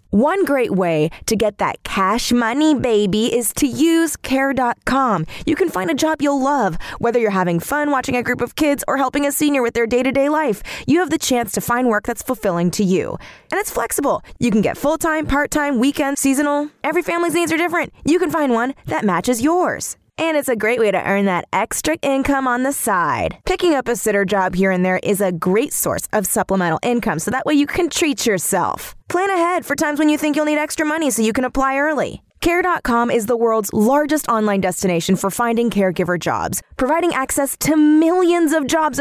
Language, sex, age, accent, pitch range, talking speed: English, female, 20-39, American, 210-300 Hz, 210 wpm